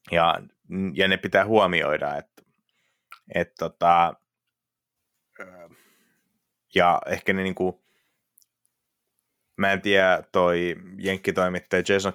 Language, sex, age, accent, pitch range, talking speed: Finnish, male, 30-49, native, 85-95 Hz, 90 wpm